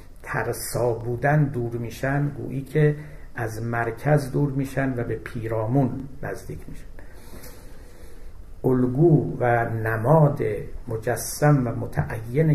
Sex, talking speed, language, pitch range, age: male, 100 wpm, Persian, 115-135 Hz, 60-79